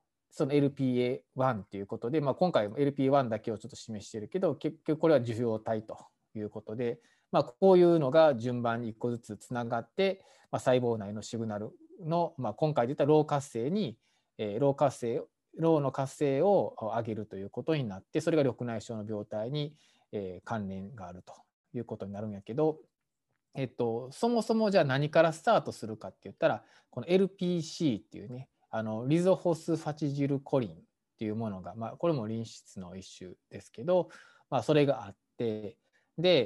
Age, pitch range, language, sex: 20-39, 110-160 Hz, Japanese, male